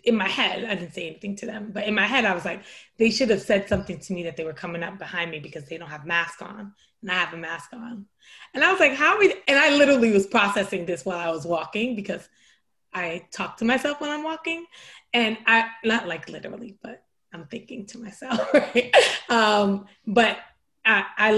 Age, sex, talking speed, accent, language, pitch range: 20-39, female, 235 wpm, American, English, 170-220 Hz